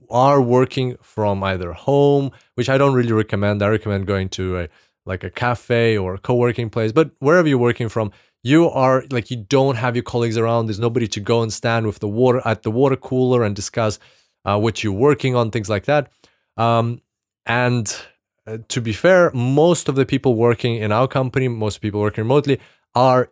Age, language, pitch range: 30-49, English, 105-130 Hz